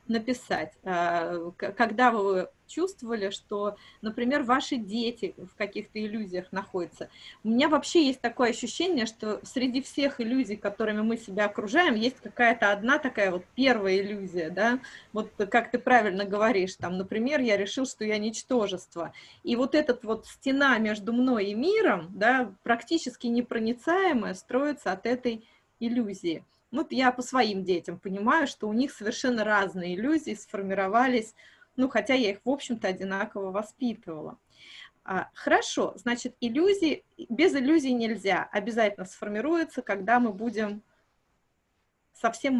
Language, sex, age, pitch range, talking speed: Russian, female, 20-39, 205-255 Hz, 135 wpm